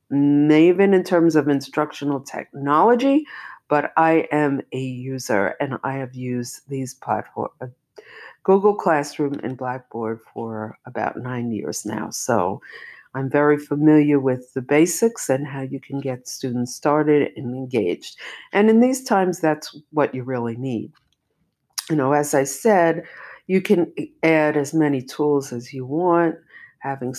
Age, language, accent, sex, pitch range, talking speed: 50-69, English, American, female, 130-160 Hz, 145 wpm